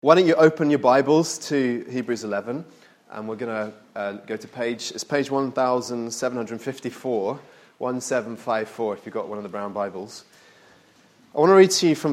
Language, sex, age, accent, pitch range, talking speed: English, male, 30-49, British, 120-150 Hz, 175 wpm